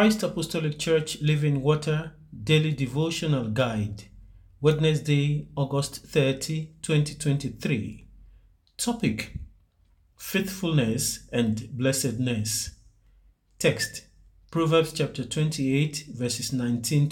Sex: male